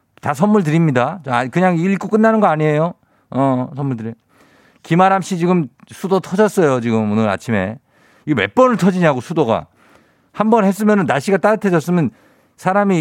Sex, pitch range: male, 110-180 Hz